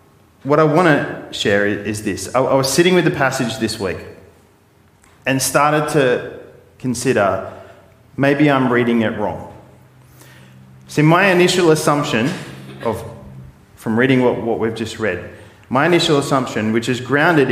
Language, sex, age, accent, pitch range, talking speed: English, male, 30-49, Australian, 110-145 Hz, 145 wpm